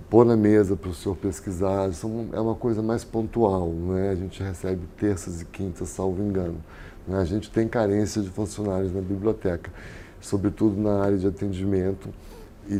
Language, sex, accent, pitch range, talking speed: Portuguese, male, Brazilian, 95-110 Hz, 170 wpm